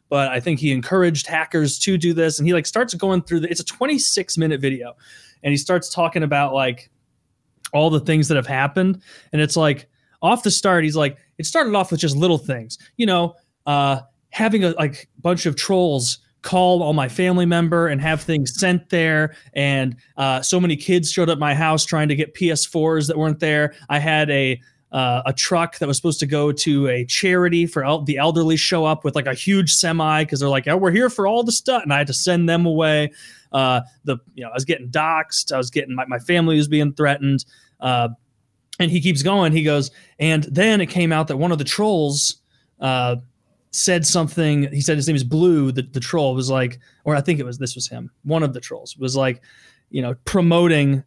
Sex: male